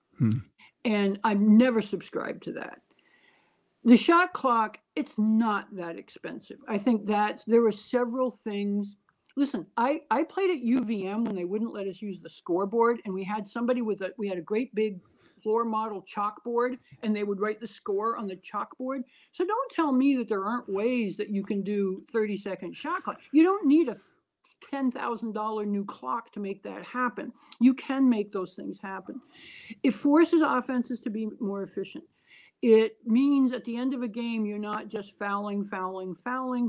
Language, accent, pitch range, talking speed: English, American, 200-255 Hz, 185 wpm